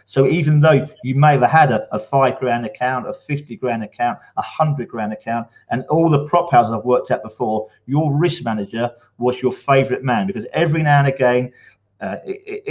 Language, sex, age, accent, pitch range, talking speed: English, male, 40-59, British, 120-140 Hz, 200 wpm